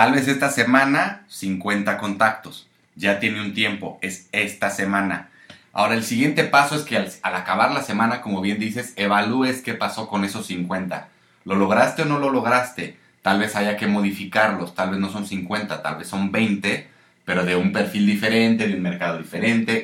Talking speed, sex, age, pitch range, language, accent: 190 wpm, male, 30-49, 95-115 Hz, Spanish, Mexican